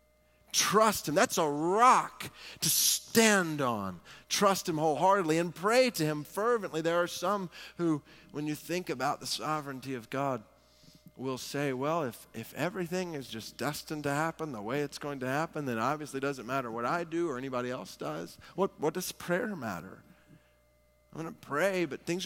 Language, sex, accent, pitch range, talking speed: English, male, American, 120-165 Hz, 185 wpm